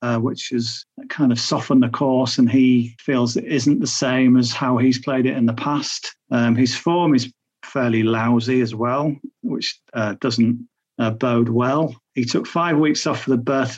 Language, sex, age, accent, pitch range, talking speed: English, male, 40-59, British, 120-150 Hz, 195 wpm